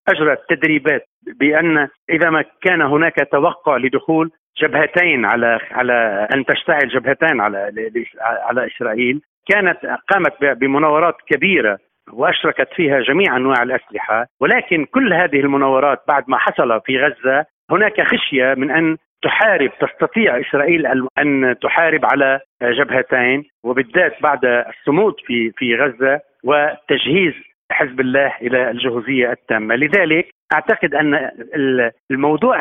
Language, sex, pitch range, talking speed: Arabic, male, 130-165 Hz, 115 wpm